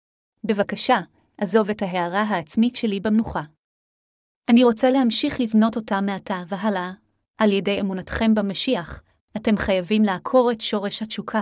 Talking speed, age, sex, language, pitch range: 125 wpm, 30-49, female, Hebrew, 200-230 Hz